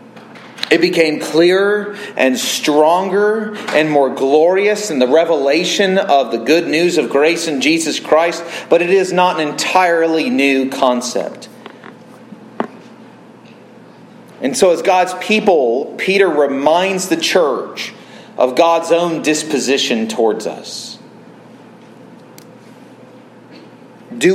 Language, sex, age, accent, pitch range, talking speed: English, male, 30-49, American, 135-200 Hz, 110 wpm